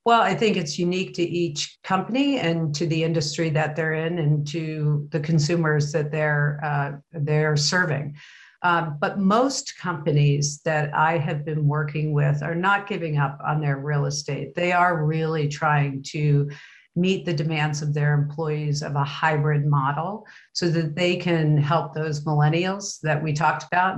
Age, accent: 50-69, American